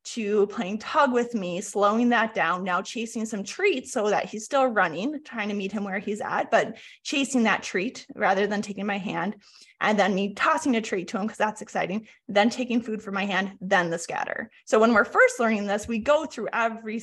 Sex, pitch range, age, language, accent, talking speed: female, 200-250 Hz, 20-39, English, American, 220 wpm